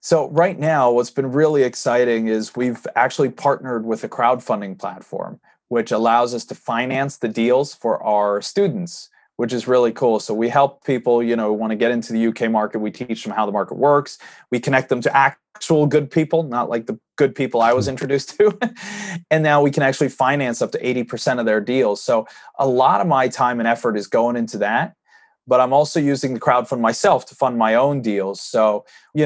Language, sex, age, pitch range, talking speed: English, male, 30-49, 115-140 Hz, 210 wpm